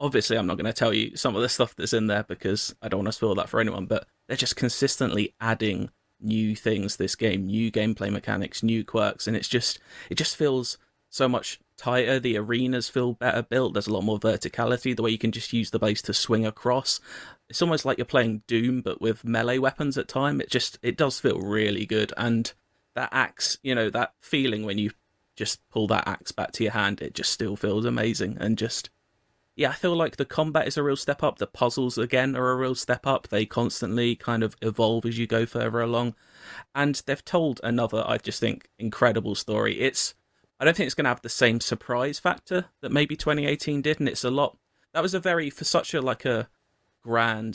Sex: male